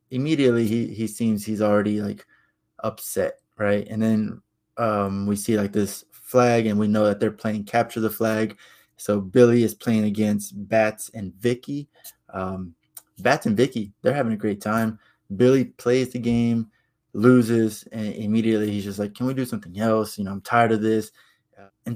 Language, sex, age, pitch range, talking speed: English, male, 20-39, 105-120 Hz, 180 wpm